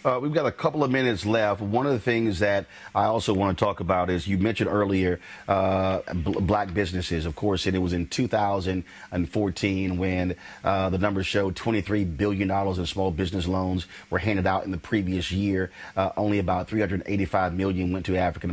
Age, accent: 30-49, American